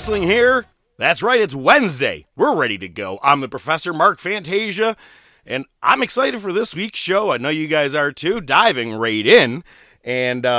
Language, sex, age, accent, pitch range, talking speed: English, male, 30-49, American, 115-160 Hz, 180 wpm